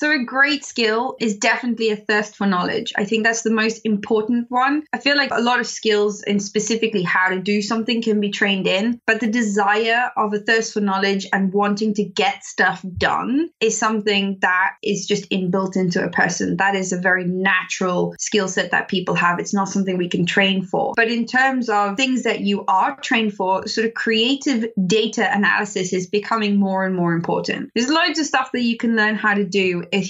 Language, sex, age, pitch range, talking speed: English, female, 20-39, 190-225 Hz, 215 wpm